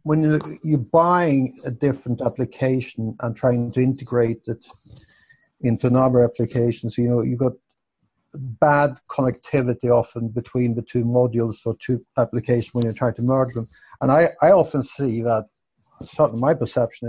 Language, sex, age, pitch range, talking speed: English, male, 50-69, 115-135 Hz, 150 wpm